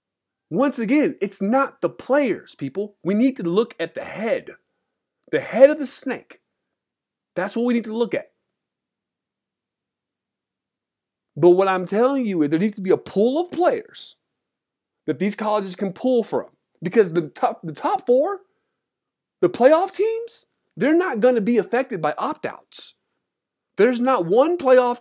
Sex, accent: male, American